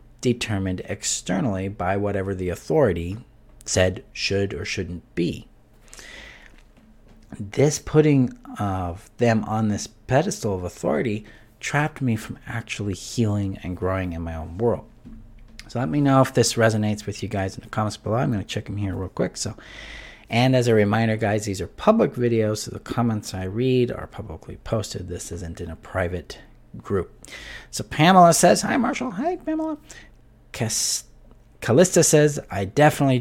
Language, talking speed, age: English, 155 wpm, 50-69